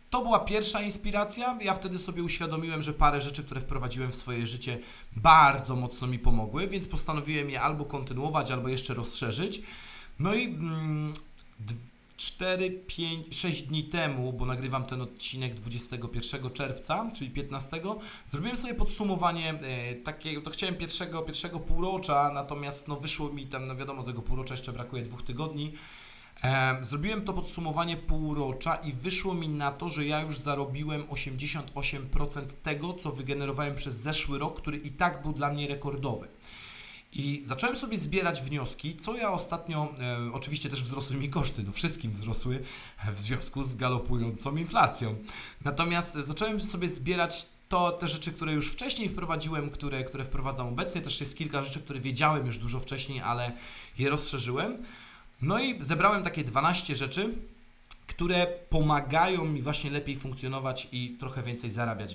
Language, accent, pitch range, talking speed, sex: Polish, native, 130-165 Hz, 150 wpm, male